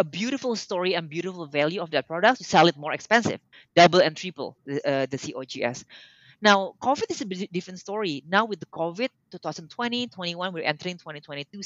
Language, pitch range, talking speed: English, 160-215 Hz, 190 wpm